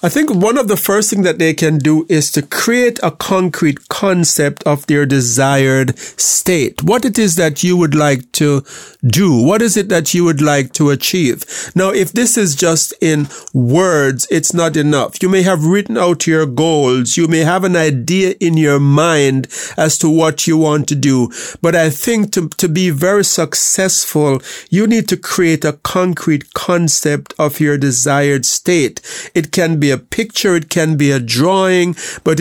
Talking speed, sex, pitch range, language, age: 185 wpm, male, 150-185 Hz, English, 50-69